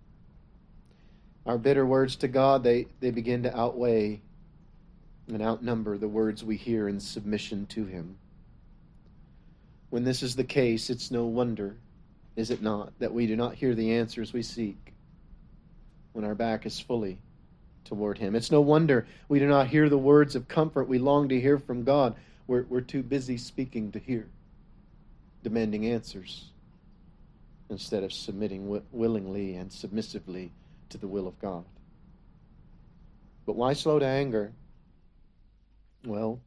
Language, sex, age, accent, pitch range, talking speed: English, male, 40-59, American, 105-130 Hz, 150 wpm